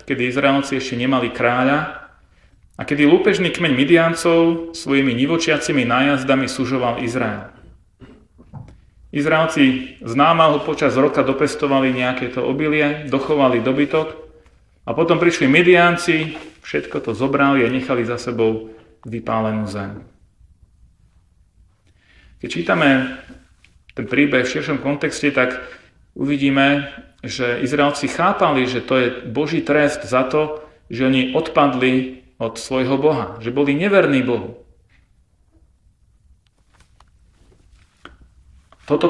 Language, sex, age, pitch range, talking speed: Slovak, male, 40-59, 115-150 Hz, 105 wpm